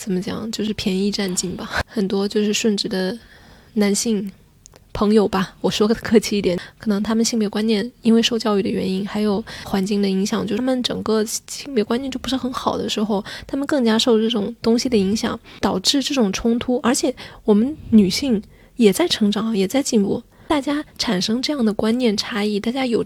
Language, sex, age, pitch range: Chinese, female, 10-29, 200-245 Hz